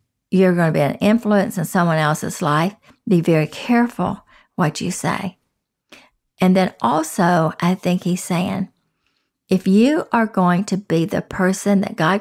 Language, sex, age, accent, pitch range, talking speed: English, female, 60-79, American, 170-210 Hz, 160 wpm